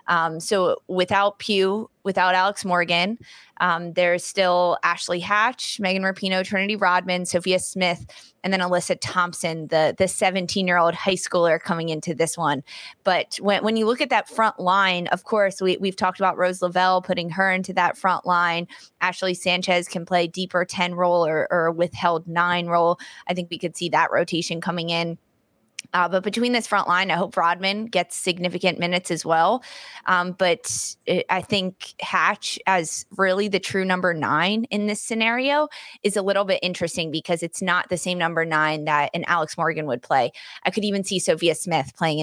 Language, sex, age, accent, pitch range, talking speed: English, female, 20-39, American, 165-190 Hz, 185 wpm